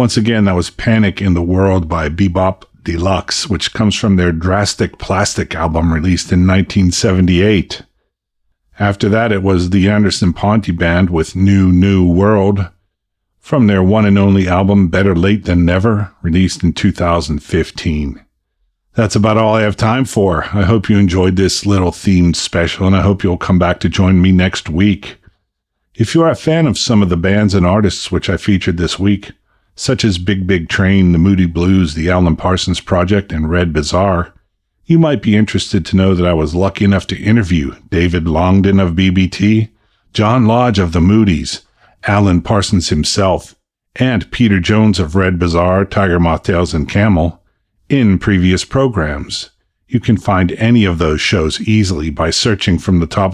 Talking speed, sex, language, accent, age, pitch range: 175 wpm, male, English, American, 50-69, 90-105 Hz